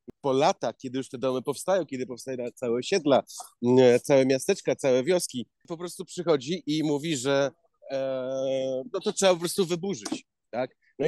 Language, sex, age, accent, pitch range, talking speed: Polish, male, 30-49, native, 130-155 Hz, 160 wpm